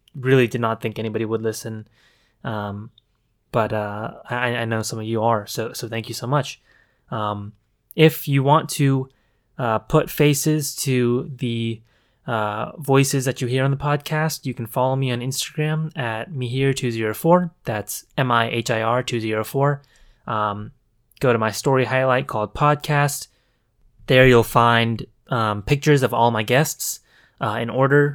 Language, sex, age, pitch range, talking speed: English, male, 20-39, 115-135 Hz, 155 wpm